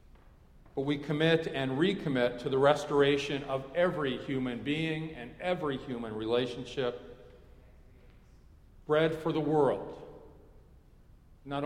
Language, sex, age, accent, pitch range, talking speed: English, male, 50-69, American, 120-150 Hz, 110 wpm